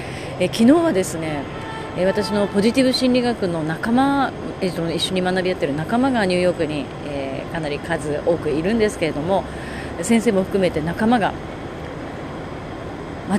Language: Japanese